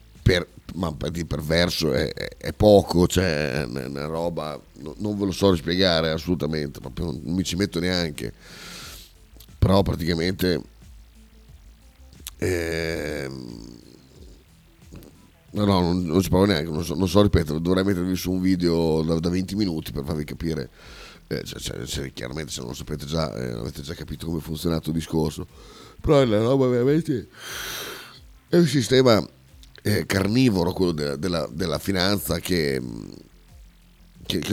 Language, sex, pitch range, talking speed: Italian, male, 75-95 Hz, 155 wpm